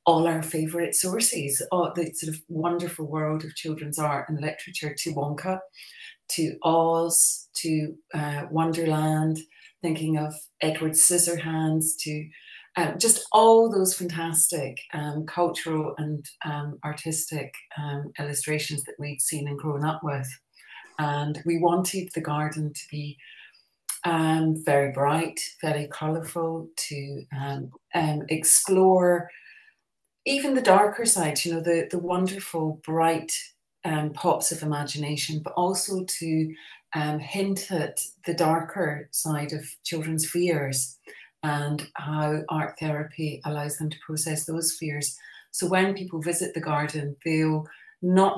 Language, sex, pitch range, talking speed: English, female, 150-170 Hz, 130 wpm